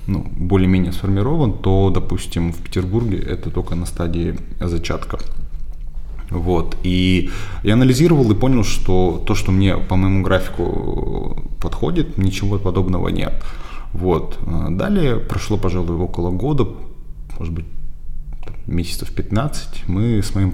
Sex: male